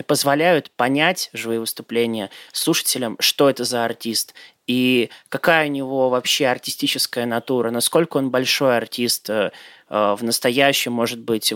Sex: male